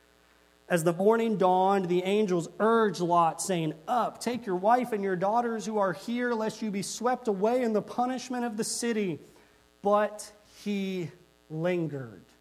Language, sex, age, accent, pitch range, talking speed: English, male, 40-59, American, 165-220 Hz, 160 wpm